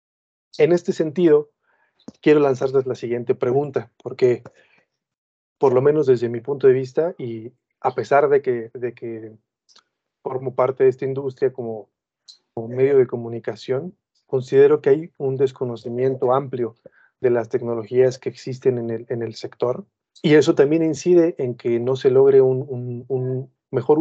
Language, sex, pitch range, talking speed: Spanish, male, 120-170 Hz, 155 wpm